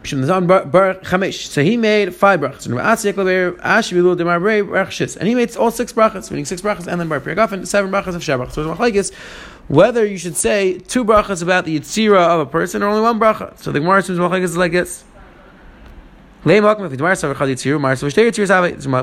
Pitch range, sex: 150-205 Hz, male